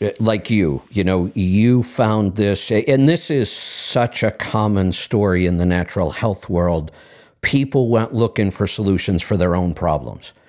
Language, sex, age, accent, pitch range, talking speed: English, male, 50-69, American, 95-120 Hz, 160 wpm